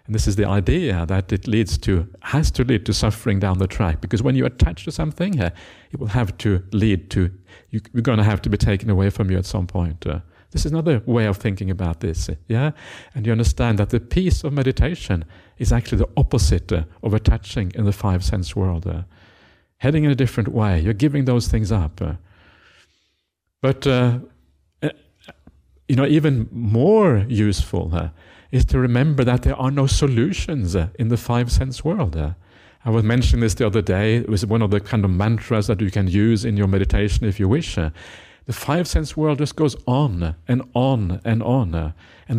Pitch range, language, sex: 95-130 Hz, English, male